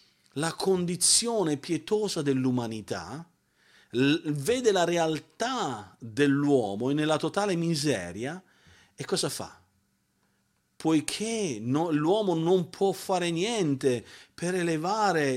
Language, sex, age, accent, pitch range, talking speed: Italian, male, 50-69, native, 130-185 Hz, 85 wpm